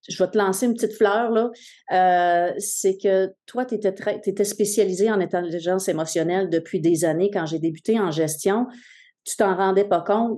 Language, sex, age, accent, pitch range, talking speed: French, female, 40-59, Canadian, 185-235 Hz, 180 wpm